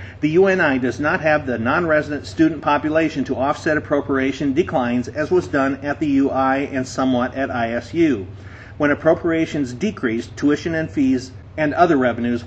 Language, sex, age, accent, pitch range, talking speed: English, male, 50-69, American, 125-155 Hz, 155 wpm